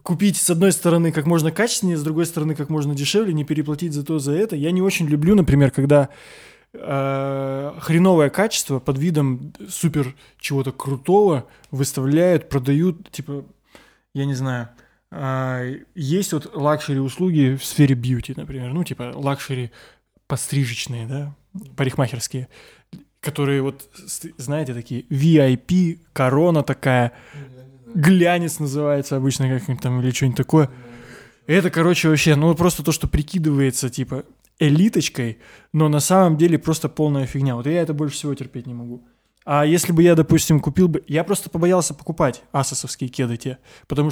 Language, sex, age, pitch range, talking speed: Russian, male, 20-39, 135-165 Hz, 145 wpm